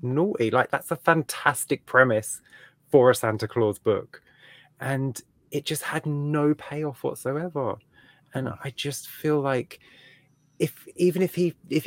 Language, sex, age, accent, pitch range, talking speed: English, male, 20-39, British, 115-145 Hz, 140 wpm